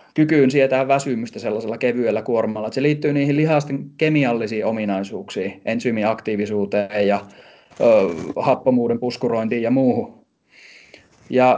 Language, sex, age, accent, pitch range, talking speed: Finnish, male, 30-49, native, 115-145 Hz, 110 wpm